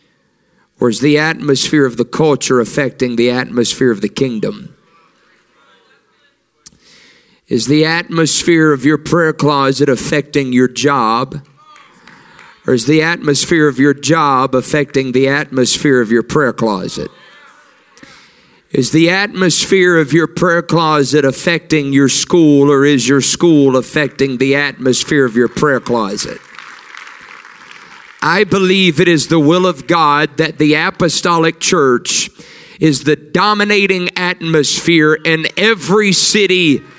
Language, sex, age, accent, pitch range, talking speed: English, male, 50-69, American, 125-165 Hz, 125 wpm